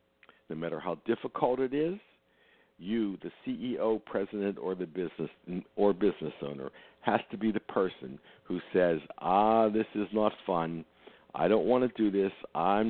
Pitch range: 95-135 Hz